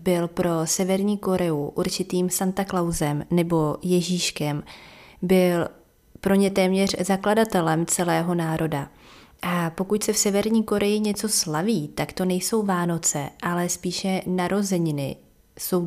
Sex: female